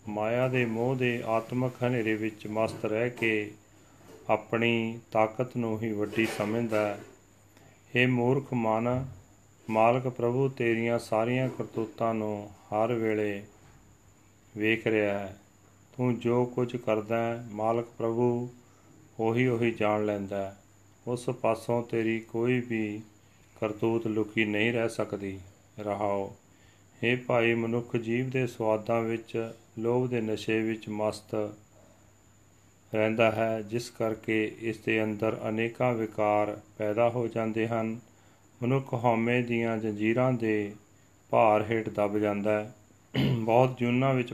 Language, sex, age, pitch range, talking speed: Punjabi, male, 40-59, 105-115 Hz, 125 wpm